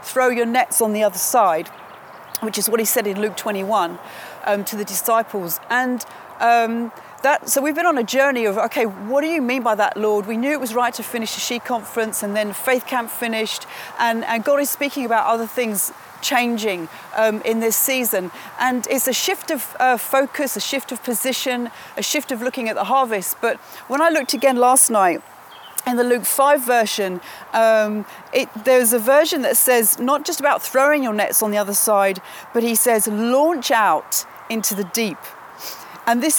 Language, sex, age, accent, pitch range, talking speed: English, female, 40-59, British, 215-265 Hz, 200 wpm